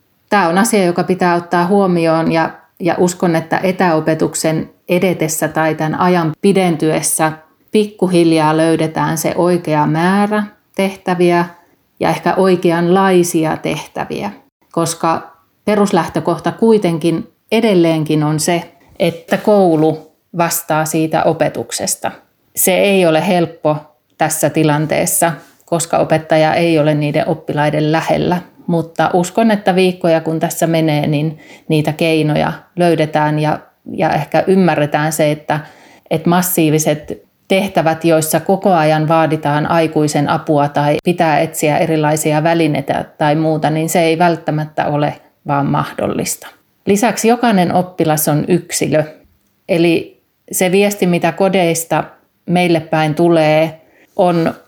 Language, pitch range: Finnish, 155-180 Hz